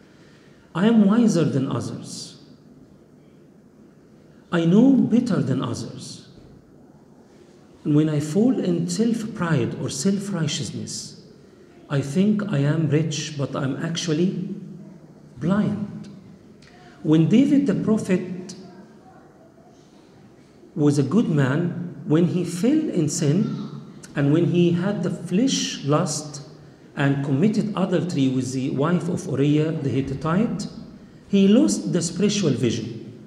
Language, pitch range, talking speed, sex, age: English, 155-200 Hz, 110 wpm, male, 50-69